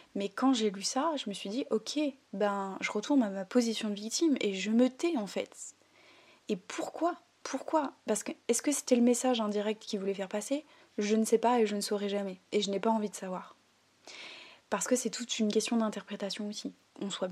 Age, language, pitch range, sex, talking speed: 20-39, French, 205-245 Hz, female, 225 wpm